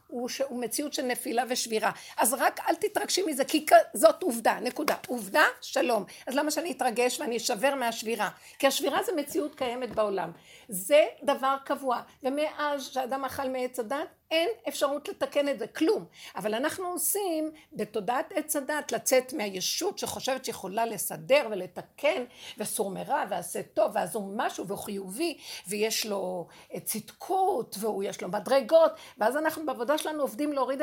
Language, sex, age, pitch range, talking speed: Hebrew, female, 60-79, 230-295 Hz, 140 wpm